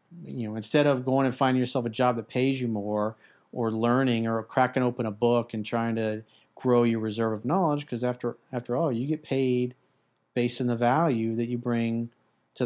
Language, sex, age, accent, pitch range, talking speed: English, male, 40-59, American, 115-130 Hz, 210 wpm